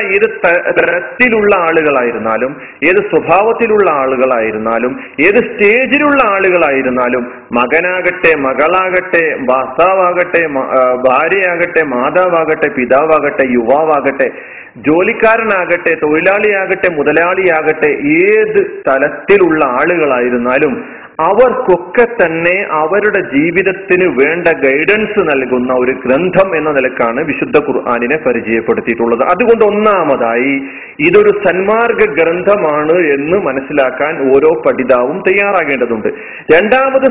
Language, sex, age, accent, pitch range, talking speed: Malayalam, male, 30-49, native, 145-225 Hz, 75 wpm